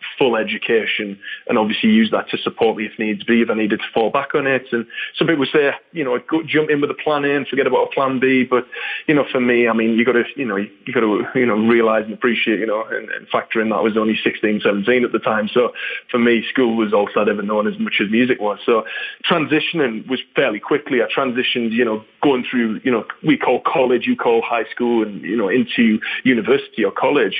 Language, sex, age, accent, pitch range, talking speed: English, male, 20-39, British, 110-145 Hz, 245 wpm